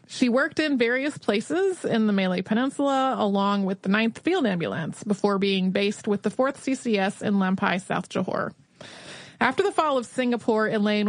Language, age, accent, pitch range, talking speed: English, 30-49, American, 195-245 Hz, 175 wpm